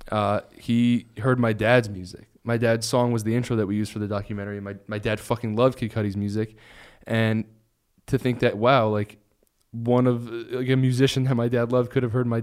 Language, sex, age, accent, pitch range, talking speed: English, male, 10-29, American, 100-125 Hz, 215 wpm